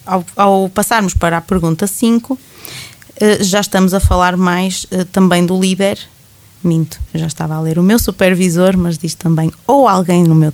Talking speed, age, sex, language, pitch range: 170 wpm, 20-39, female, Portuguese, 170-205 Hz